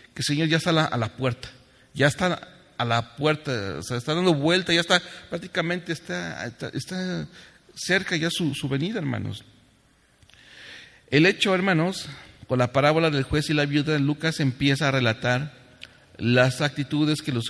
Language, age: English, 40-59